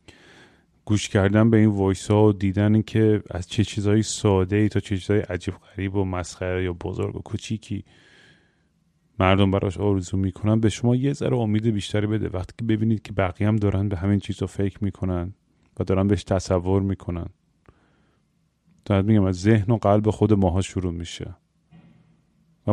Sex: male